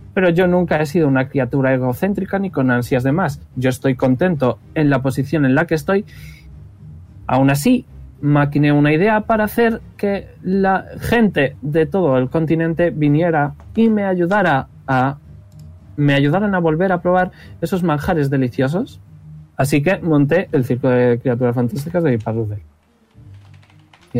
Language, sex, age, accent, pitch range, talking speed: Spanish, male, 20-39, Spanish, 120-175 Hz, 155 wpm